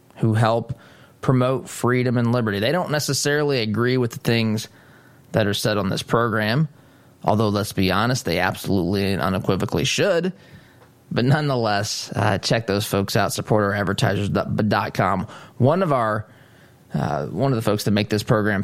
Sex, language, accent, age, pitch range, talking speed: male, English, American, 20-39, 105-130 Hz, 155 wpm